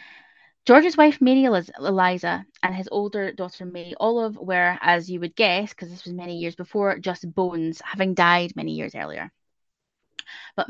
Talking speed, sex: 165 wpm, female